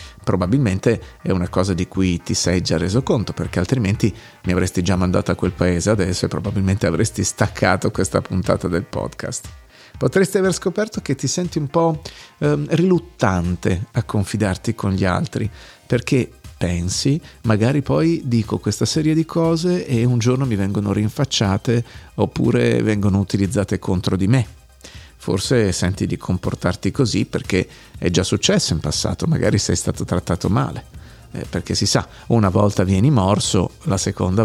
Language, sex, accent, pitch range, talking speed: Italian, male, native, 95-125 Hz, 160 wpm